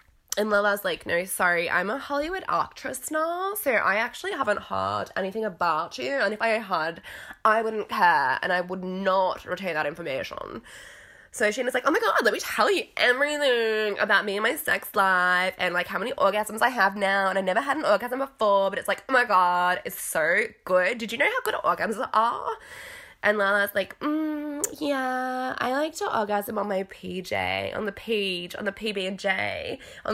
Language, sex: English, female